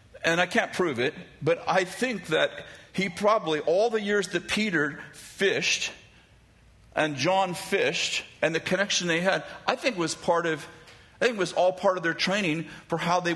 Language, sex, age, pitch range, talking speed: English, male, 50-69, 145-195 Hz, 185 wpm